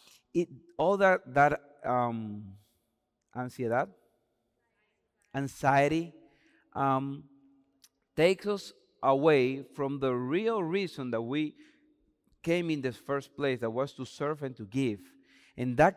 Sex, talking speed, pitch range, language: male, 110 wpm, 130-165 Hz, English